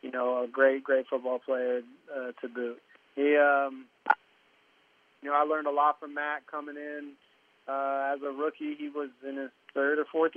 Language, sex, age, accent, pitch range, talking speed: English, male, 20-39, American, 130-145 Hz, 190 wpm